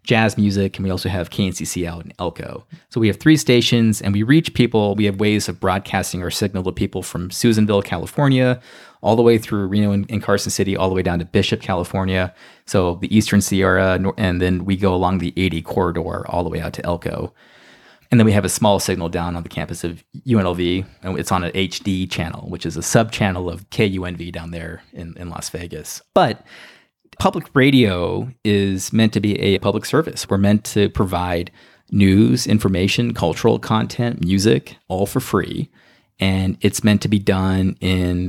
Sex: male